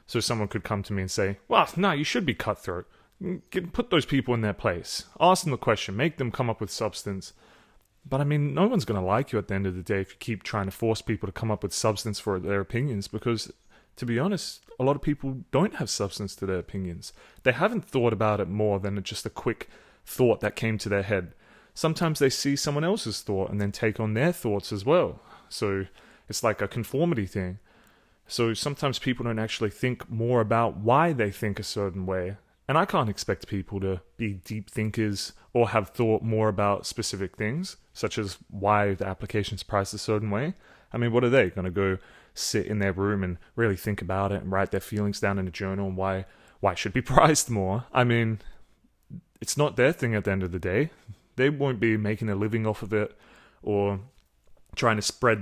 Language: English